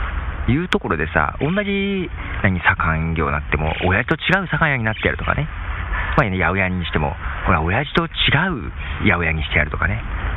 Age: 40-59